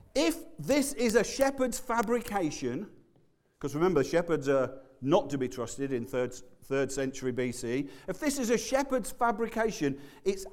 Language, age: English, 40-59